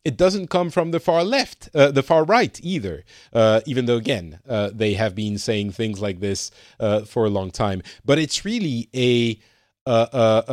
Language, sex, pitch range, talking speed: English, male, 110-150 Hz, 195 wpm